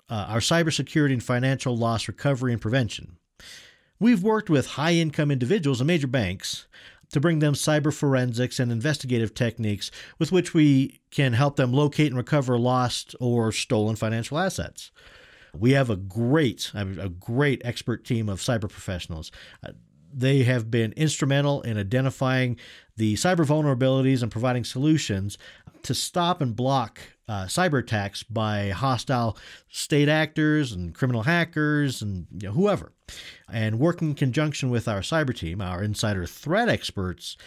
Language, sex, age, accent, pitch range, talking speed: English, male, 50-69, American, 110-150 Hz, 150 wpm